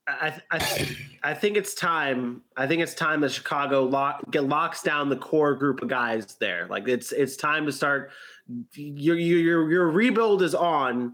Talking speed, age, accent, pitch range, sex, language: 185 wpm, 30-49, American, 150-225 Hz, male, English